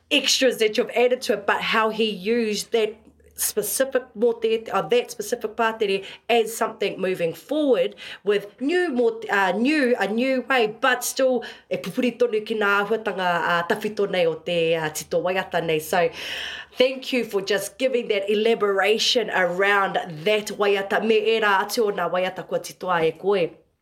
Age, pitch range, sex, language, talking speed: 30-49, 195-250 Hz, female, English, 130 wpm